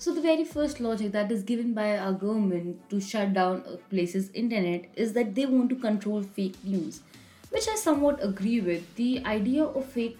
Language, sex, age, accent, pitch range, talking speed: English, female, 20-39, Indian, 200-255 Hz, 200 wpm